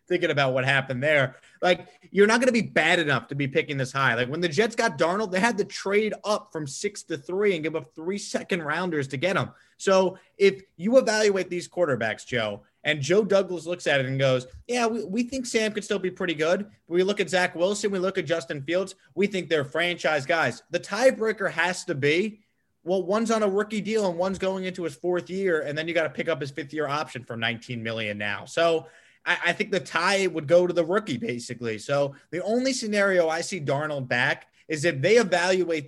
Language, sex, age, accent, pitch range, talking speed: English, male, 30-49, American, 145-205 Hz, 230 wpm